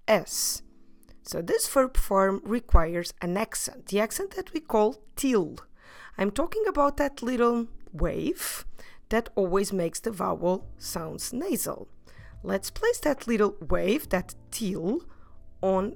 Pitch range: 175-240 Hz